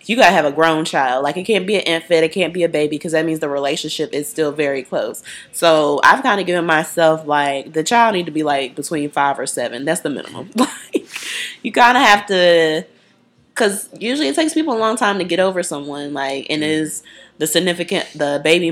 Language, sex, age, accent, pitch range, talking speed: English, female, 20-39, American, 150-190 Hz, 230 wpm